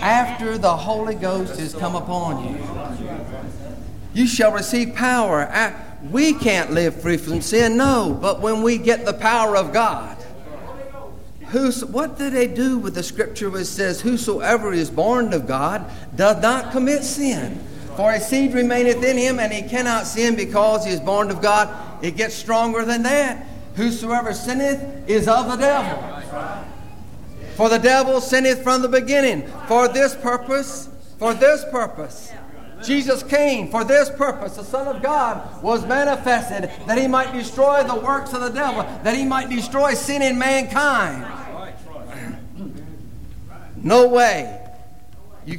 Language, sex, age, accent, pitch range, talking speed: English, male, 50-69, American, 205-260 Hz, 150 wpm